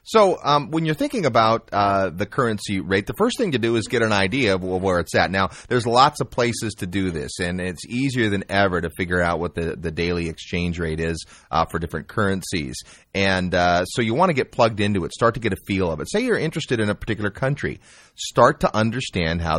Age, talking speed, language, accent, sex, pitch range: 30-49, 240 wpm, English, American, male, 90-115 Hz